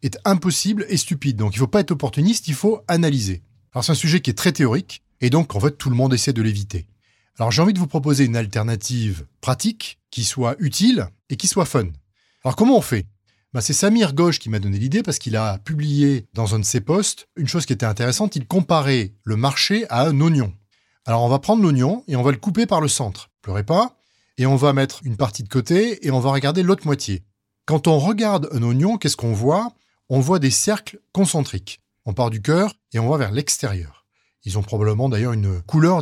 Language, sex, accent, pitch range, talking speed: French, male, French, 115-170 Hz, 230 wpm